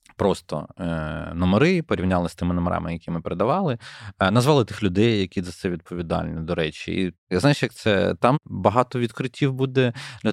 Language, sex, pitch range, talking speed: Ukrainian, male, 90-125 Hz, 170 wpm